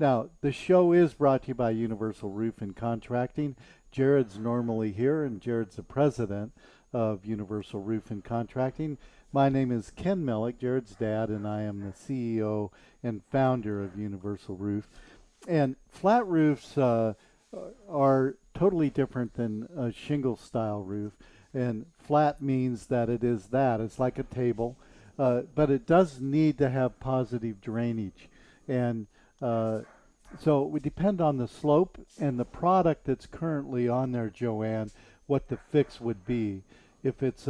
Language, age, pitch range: English, 50-69, 115-140 Hz